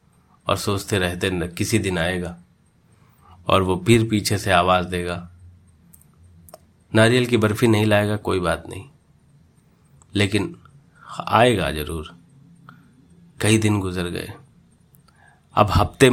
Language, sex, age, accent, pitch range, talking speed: Hindi, male, 30-49, native, 90-110 Hz, 110 wpm